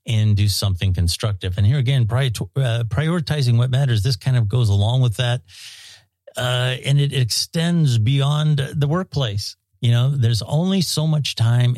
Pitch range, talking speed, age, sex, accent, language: 100-125 Hz, 160 wpm, 50-69, male, American, English